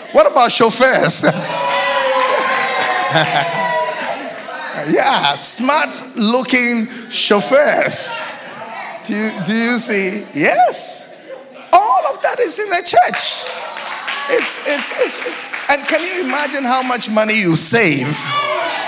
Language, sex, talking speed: English, male, 100 wpm